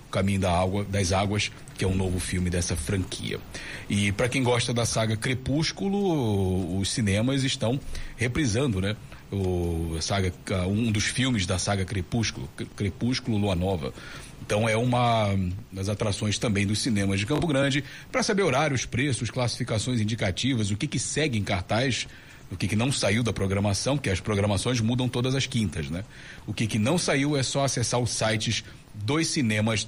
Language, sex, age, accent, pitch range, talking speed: Portuguese, male, 40-59, Brazilian, 100-135 Hz, 170 wpm